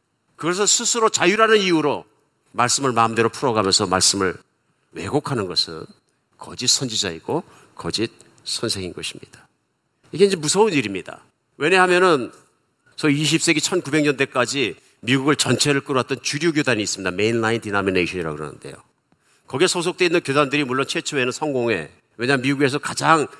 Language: Korean